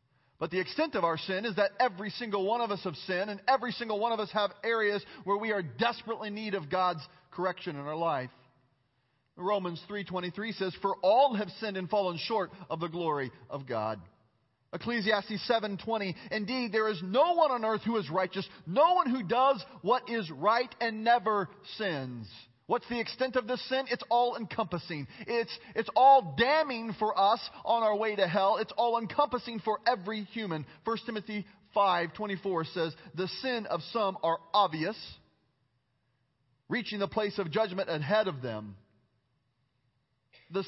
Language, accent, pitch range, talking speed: English, American, 155-225 Hz, 175 wpm